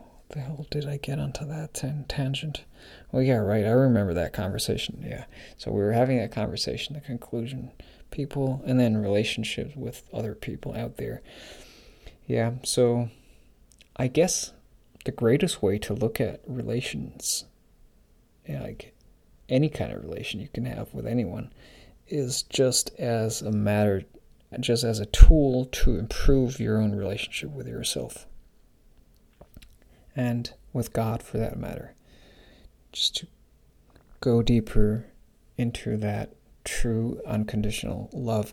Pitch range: 105-125 Hz